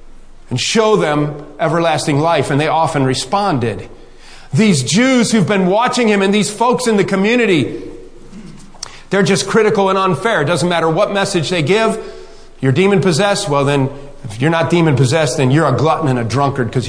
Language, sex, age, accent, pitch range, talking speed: English, male, 40-59, American, 160-240 Hz, 175 wpm